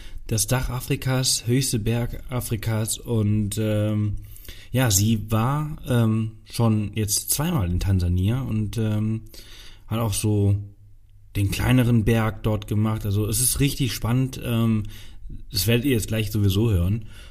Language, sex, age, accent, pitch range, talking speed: German, male, 30-49, German, 100-120 Hz, 140 wpm